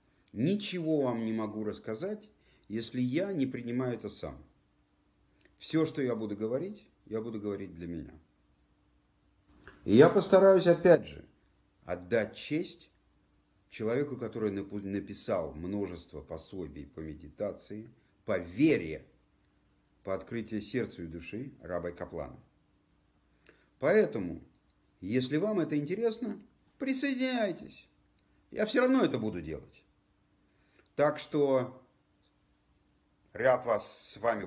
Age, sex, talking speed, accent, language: 50-69, male, 110 wpm, native, Russian